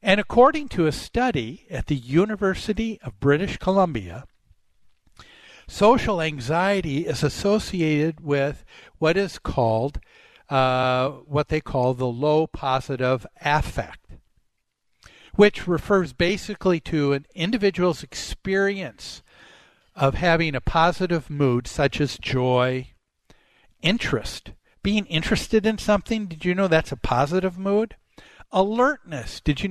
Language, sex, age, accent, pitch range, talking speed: English, male, 60-79, American, 140-195 Hz, 115 wpm